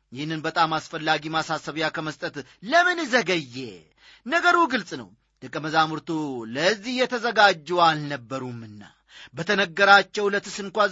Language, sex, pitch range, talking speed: Amharic, male, 160-255 Hz, 95 wpm